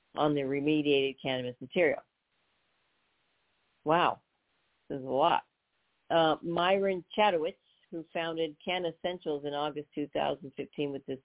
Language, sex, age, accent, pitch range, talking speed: English, female, 50-69, American, 145-170 Hz, 115 wpm